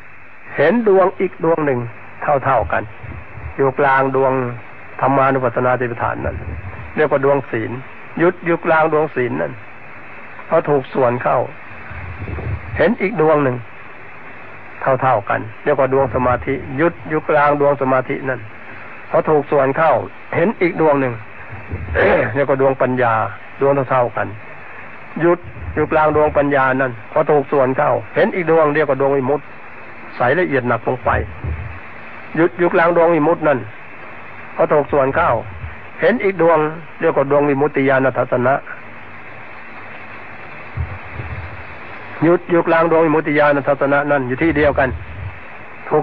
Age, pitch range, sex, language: 60-79, 120-155 Hz, male, Thai